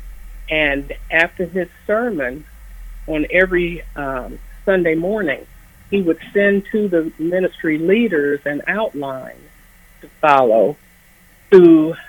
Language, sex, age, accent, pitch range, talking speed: English, female, 50-69, American, 145-175 Hz, 105 wpm